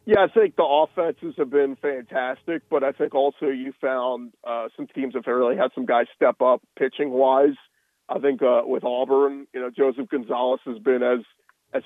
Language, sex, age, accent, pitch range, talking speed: English, male, 40-59, American, 135-185 Hz, 190 wpm